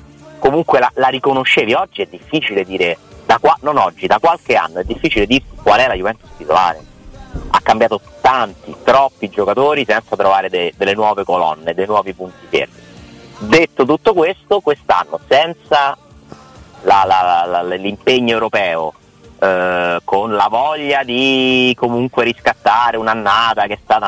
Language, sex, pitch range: Italian, male, 100-130 Hz